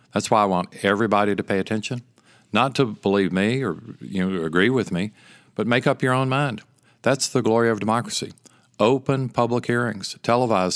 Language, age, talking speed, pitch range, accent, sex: English, 50-69, 185 wpm, 100-125 Hz, American, male